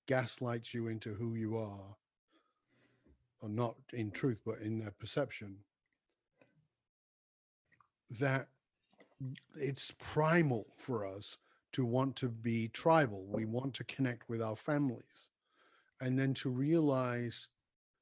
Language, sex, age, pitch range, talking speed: English, male, 50-69, 115-155 Hz, 115 wpm